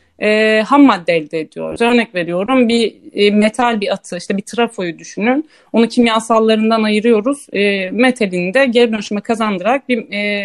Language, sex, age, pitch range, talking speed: Turkish, female, 30-49, 190-255 Hz, 155 wpm